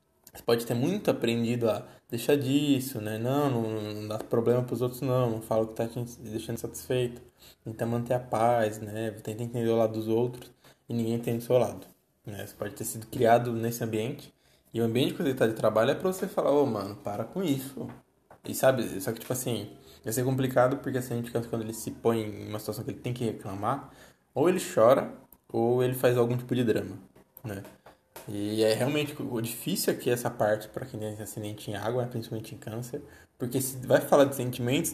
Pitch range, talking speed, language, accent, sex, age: 110-130 Hz, 220 wpm, Portuguese, Brazilian, male, 20-39